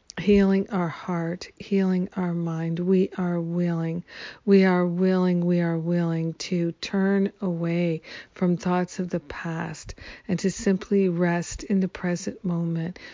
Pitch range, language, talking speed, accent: 170-190 Hz, English, 140 wpm, American